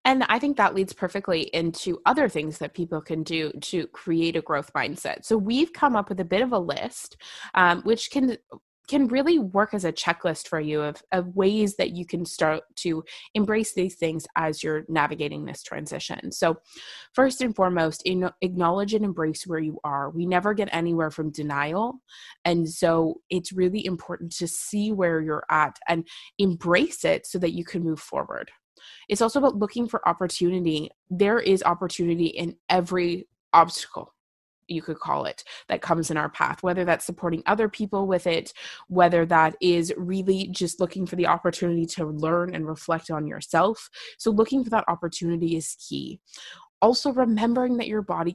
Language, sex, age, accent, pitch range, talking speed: English, female, 20-39, American, 165-205 Hz, 180 wpm